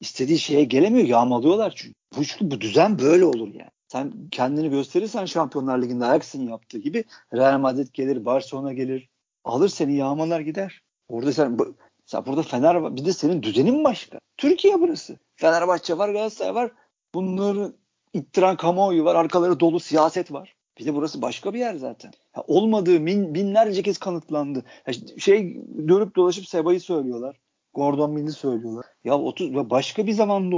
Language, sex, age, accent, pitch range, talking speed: Turkish, male, 50-69, native, 145-195 Hz, 155 wpm